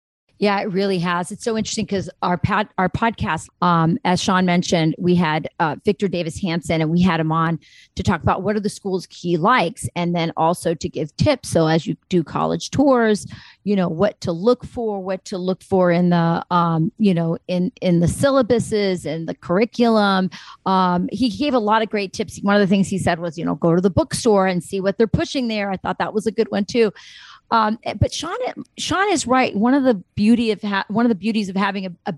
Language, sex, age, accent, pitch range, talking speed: English, female, 40-59, American, 175-215 Hz, 235 wpm